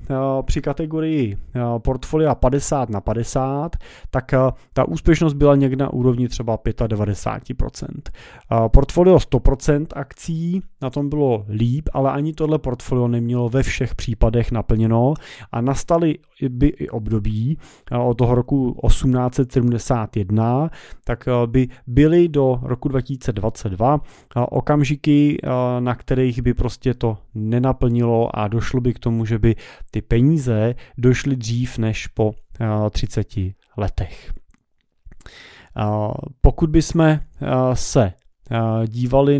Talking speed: 115 wpm